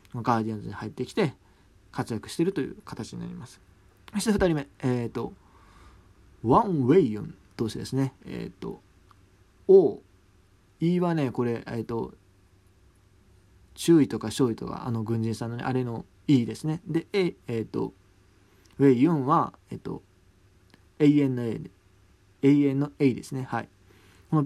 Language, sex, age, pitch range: Japanese, male, 20-39, 100-145 Hz